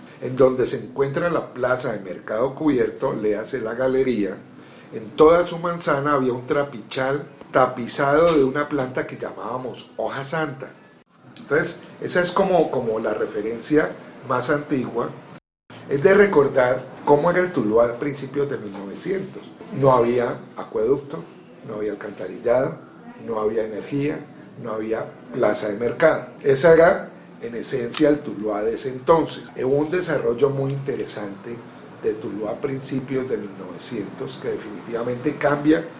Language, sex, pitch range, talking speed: Spanish, male, 115-155 Hz, 140 wpm